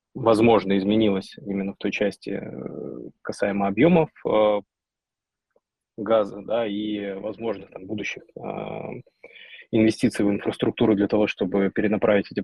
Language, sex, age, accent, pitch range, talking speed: Russian, male, 20-39, native, 100-115 Hz, 100 wpm